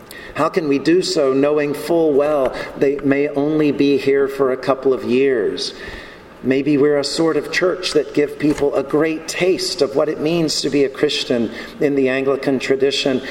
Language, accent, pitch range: English, American, 130-150 Hz